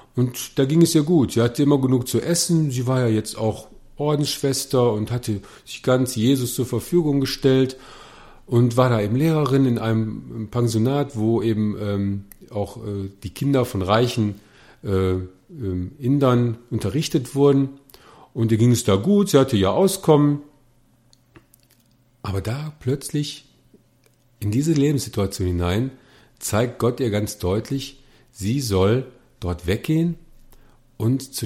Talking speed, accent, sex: 145 wpm, German, male